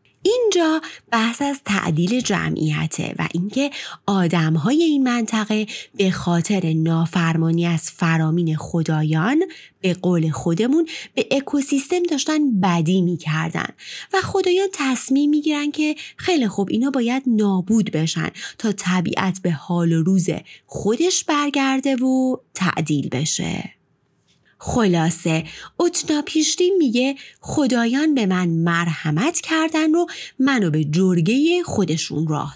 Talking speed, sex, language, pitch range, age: 115 wpm, female, Persian, 165-275 Hz, 20-39